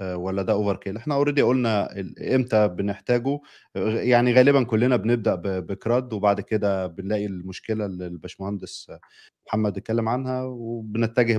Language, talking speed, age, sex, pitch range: Arabic, 125 wpm, 20-39, male, 90-115 Hz